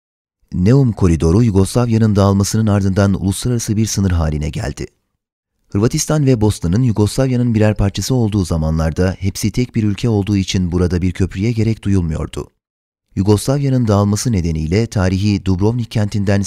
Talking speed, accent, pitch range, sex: 130 wpm, native, 95-110 Hz, male